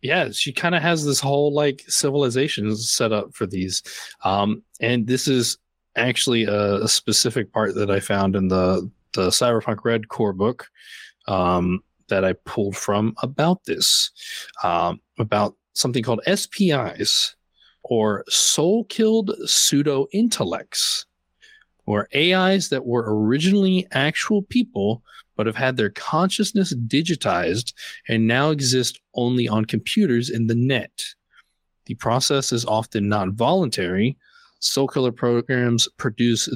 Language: English